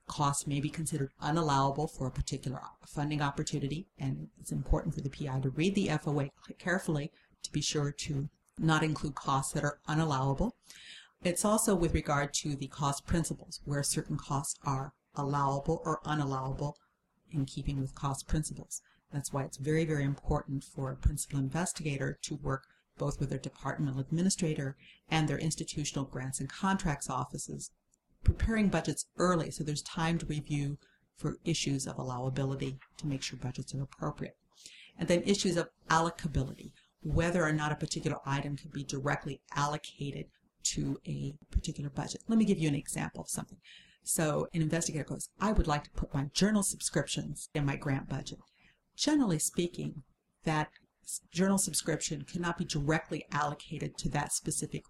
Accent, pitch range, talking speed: American, 140-165 Hz, 160 wpm